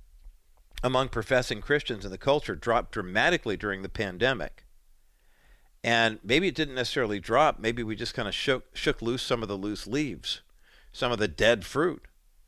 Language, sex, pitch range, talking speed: English, male, 105-140 Hz, 170 wpm